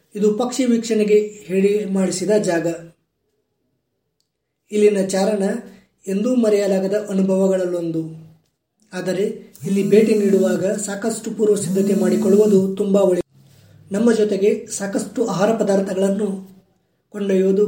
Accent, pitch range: native, 185-210 Hz